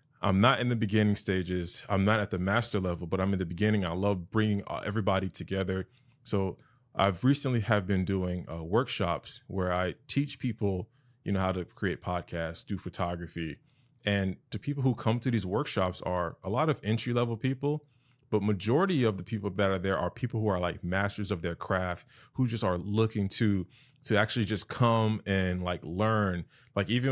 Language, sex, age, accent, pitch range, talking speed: English, male, 20-39, American, 95-120 Hz, 195 wpm